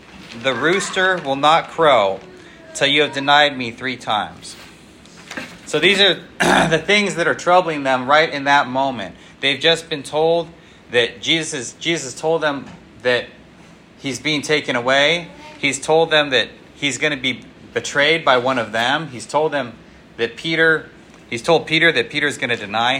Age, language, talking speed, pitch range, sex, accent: 30-49, English, 170 wpm, 120-150 Hz, male, American